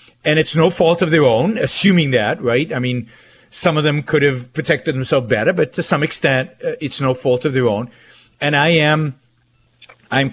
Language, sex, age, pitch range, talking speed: English, male, 50-69, 120-160 Hz, 205 wpm